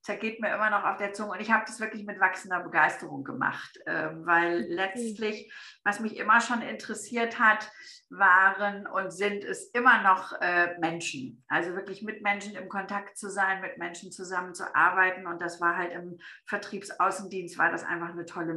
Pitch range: 175-225 Hz